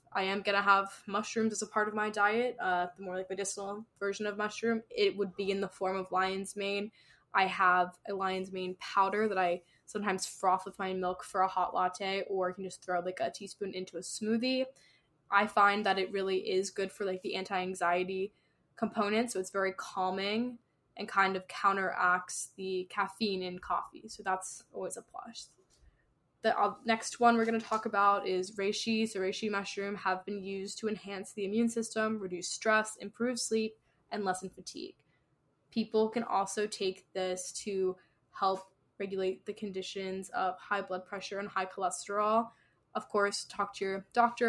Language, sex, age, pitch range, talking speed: English, female, 10-29, 185-210 Hz, 185 wpm